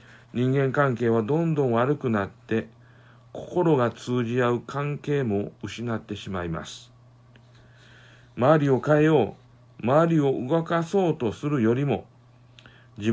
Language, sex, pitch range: Japanese, male, 120-150 Hz